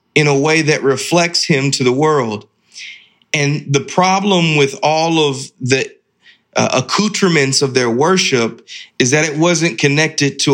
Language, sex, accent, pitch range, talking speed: English, male, American, 130-160 Hz, 150 wpm